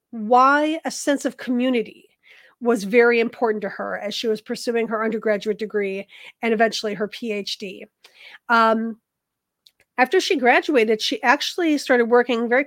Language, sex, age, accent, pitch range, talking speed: English, female, 40-59, American, 225-285 Hz, 140 wpm